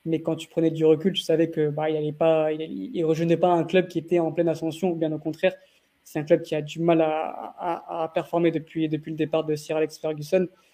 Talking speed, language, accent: 270 wpm, French, French